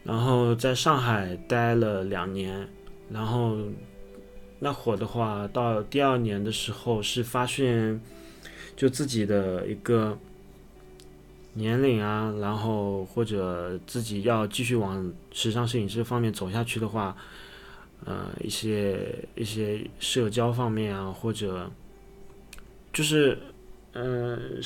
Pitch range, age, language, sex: 105-125 Hz, 20-39, Chinese, male